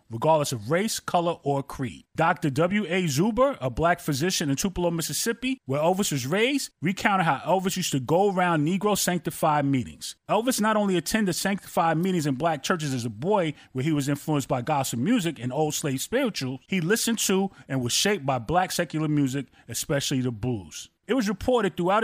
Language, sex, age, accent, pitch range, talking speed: English, male, 30-49, American, 140-195 Hz, 190 wpm